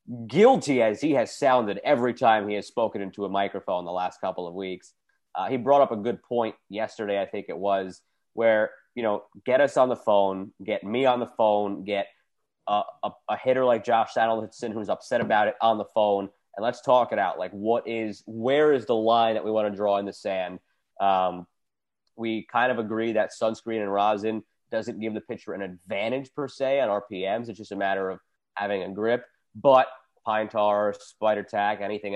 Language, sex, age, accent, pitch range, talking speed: English, male, 20-39, American, 105-130 Hz, 205 wpm